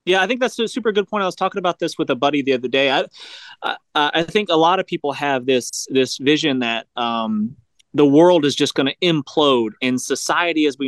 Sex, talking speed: male, 245 wpm